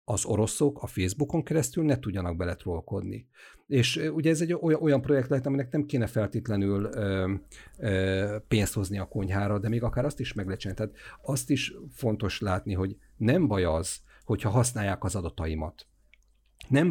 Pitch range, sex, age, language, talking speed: 95-135 Hz, male, 50-69, Hungarian, 160 wpm